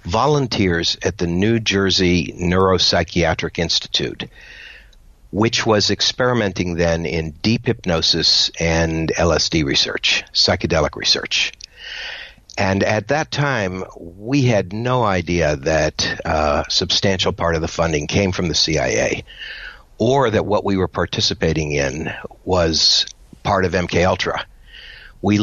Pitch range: 85-110 Hz